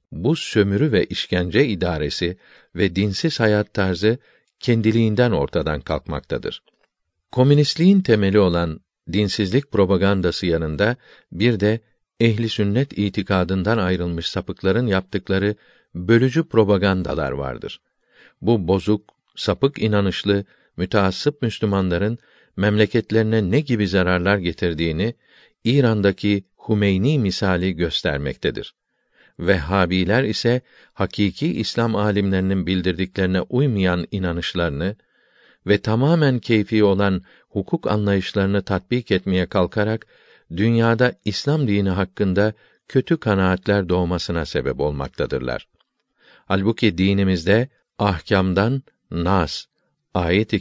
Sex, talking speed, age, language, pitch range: male, 90 wpm, 50-69, Turkish, 90-115 Hz